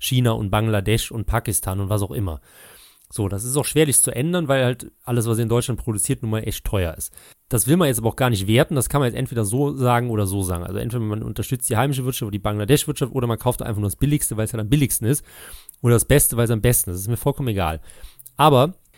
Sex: male